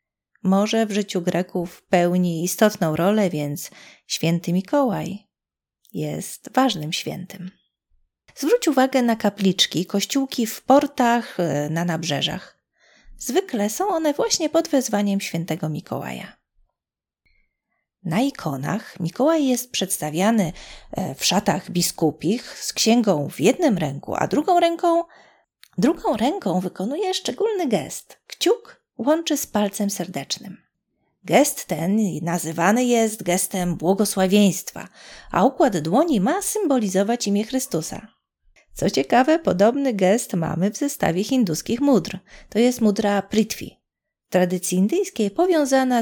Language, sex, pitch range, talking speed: Polish, female, 180-265 Hz, 110 wpm